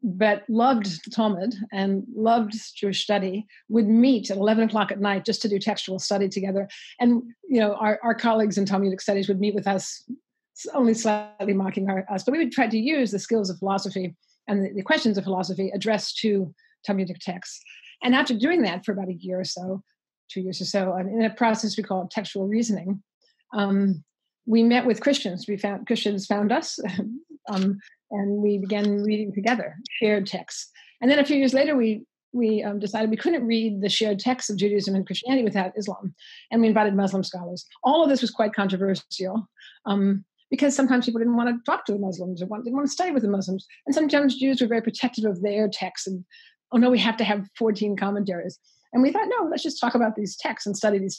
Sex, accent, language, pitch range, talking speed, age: female, American, English, 195-240 Hz, 215 wpm, 50-69